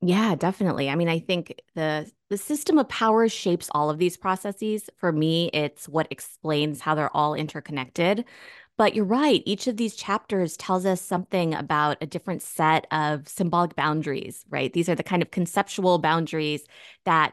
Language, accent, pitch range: English, American, 150-200 Hz